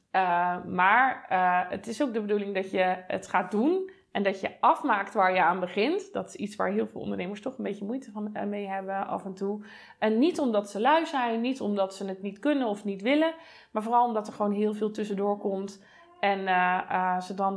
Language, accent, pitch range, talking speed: Dutch, Dutch, 205-285 Hz, 230 wpm